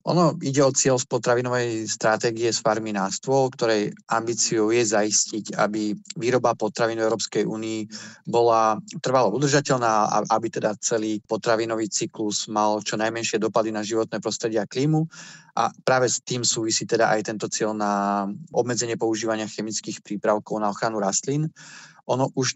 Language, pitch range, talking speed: Slovak, 105-120 Hz, 150 wpm